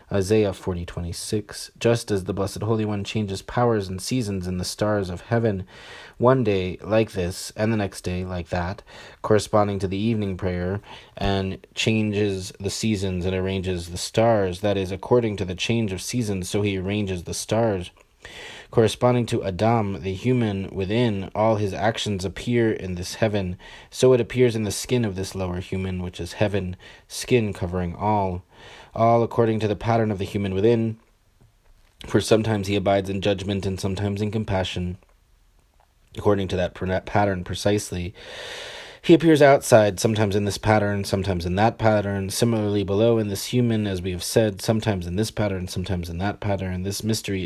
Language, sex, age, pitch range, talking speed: English, male, 30-49, 95-110 Hz, 175 wpm